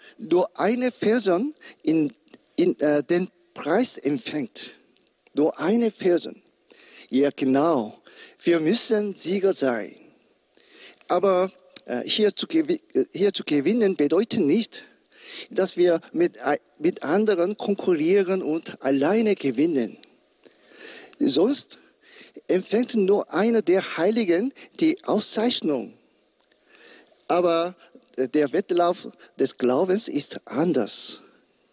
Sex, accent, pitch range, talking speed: male, German, 170-235 Hz, 95 wpm